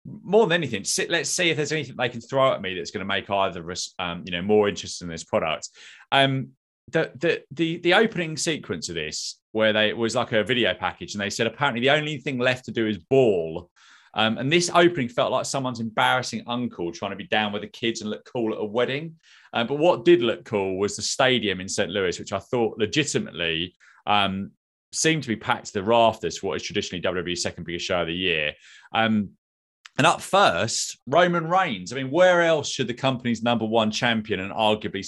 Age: 30-49